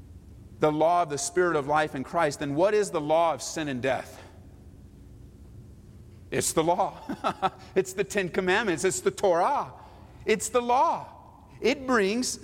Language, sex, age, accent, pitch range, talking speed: English, male, 50-69, American, 110-180 Hz, 160 wpm